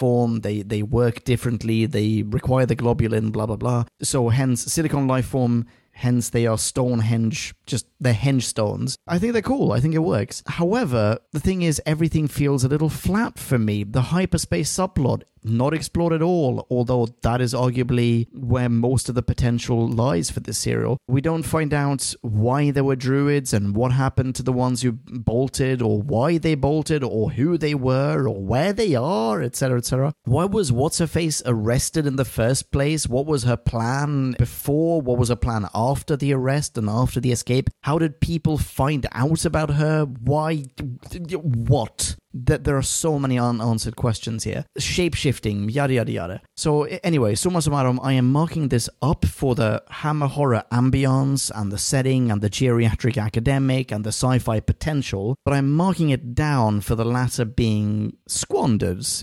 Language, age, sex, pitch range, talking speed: English, 30-49, male, 115-145 Hz, 175 wpm